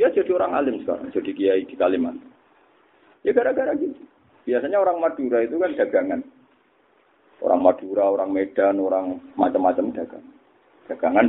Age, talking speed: 50-69, 140 wpm